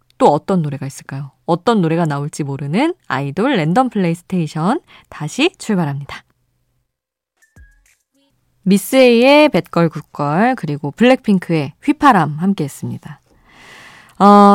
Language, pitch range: Korean, 155-225 Hz